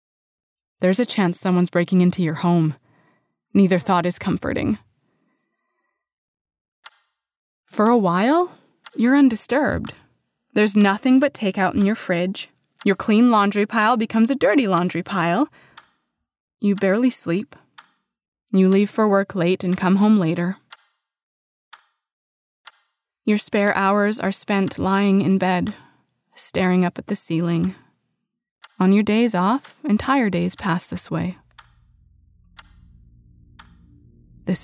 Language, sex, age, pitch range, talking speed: English, female, 20-39, 175-215 Hz, 120 wpm